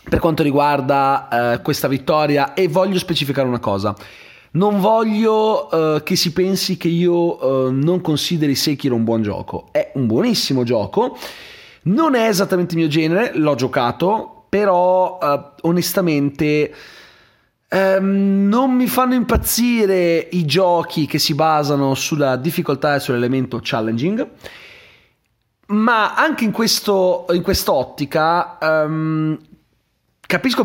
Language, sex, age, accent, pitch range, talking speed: Italian, male, 30-49, native, 135-190 Hz, 115 wpm